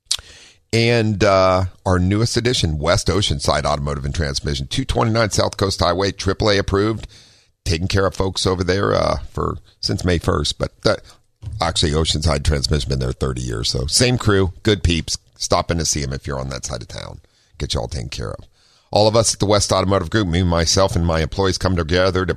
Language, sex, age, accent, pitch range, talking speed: English, male, 50-69, American, 75-100 Hz, 205 wpm